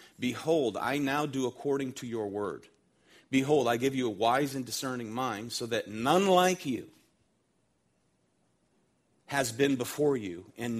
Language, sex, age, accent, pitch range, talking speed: English, male, 40-59, American, 115-145 Hz, 150 wpm